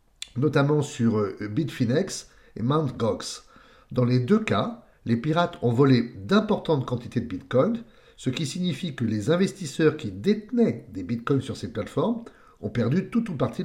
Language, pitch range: English, 115-165 Hz